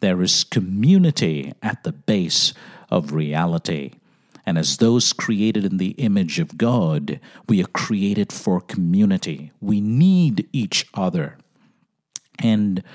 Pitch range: 105-170 Hz